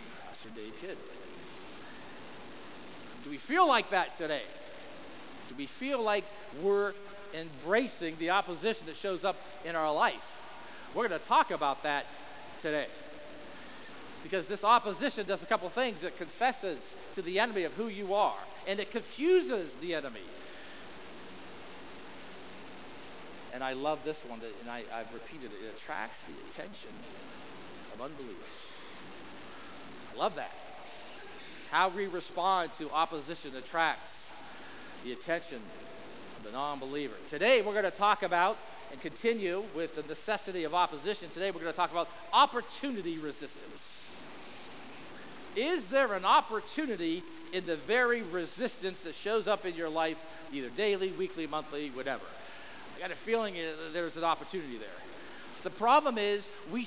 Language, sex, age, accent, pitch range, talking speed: English, male, 50-69, American, 160-220 Hz, 140 wpm